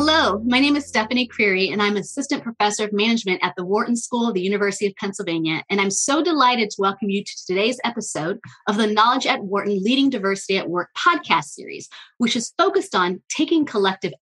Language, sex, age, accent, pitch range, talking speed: English, female, 30-49, American, 180-250 Hz, 200 wpm